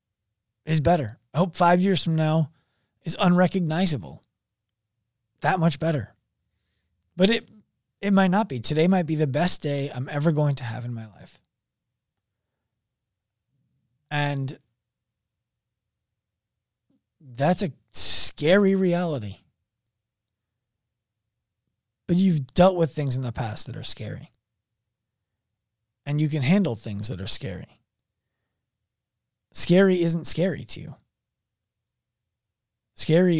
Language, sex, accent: English, male, American